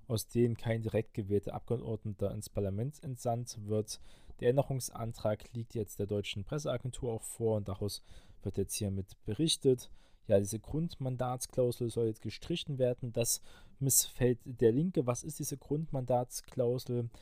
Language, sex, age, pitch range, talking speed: German, male, 20-39, 105-125 Hz, 140 wpm